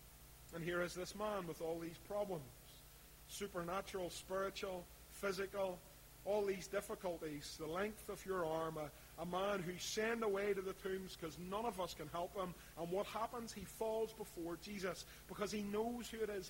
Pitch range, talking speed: 165-200 Hz, 180 wpm